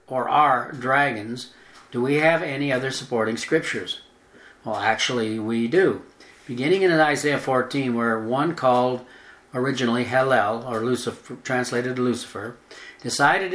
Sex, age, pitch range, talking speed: male, 60-79, 120-145 Hz, 125 wpm